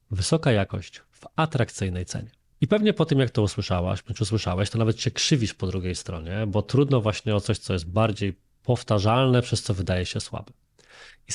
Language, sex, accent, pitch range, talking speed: Polish, male, native, 100-135 Hz, 190 wpm